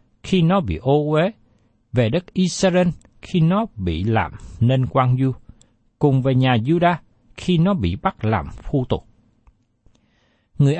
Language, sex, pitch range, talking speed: Vietnamese, male, 110-170 Hz, 150 wpm